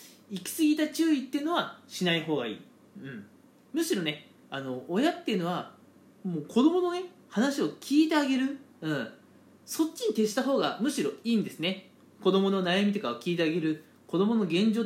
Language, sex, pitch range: Japanese, male, 175-265 Hz